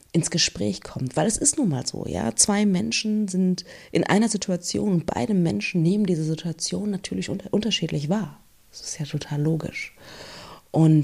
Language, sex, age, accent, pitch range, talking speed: German, female, 30-49, German, 150-200 Hz, 170 wpm